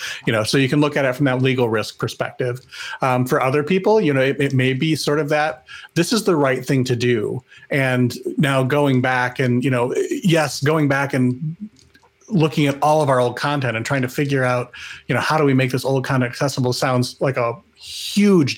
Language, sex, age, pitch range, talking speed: English, male, 30-49, 130-175 Hz, 225 wpm